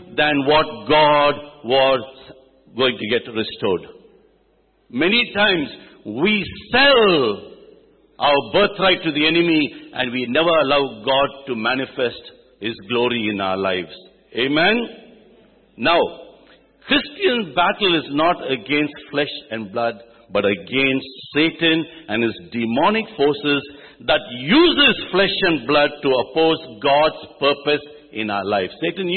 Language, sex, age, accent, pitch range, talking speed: English, male, 60-79, Indian, 125-205 Hz, 120 wpm